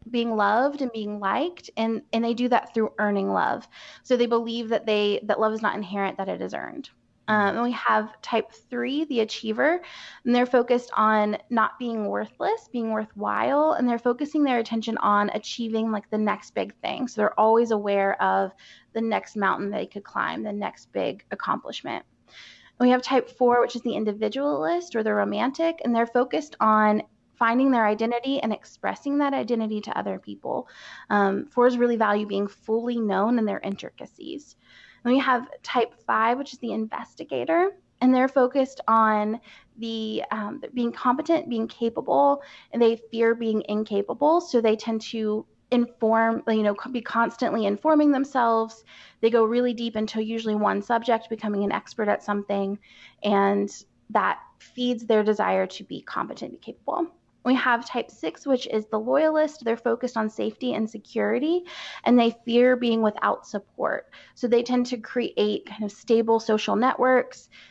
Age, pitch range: 20-39, 215-250 Hz